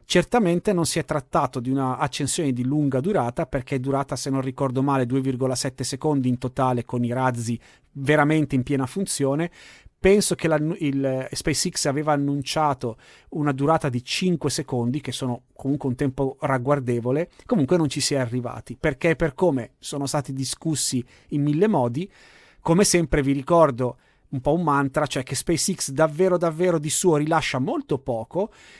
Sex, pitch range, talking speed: male, 130-155 Hz, 165 wpm